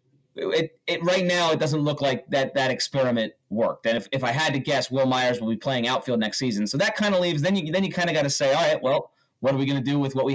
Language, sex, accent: English, male, American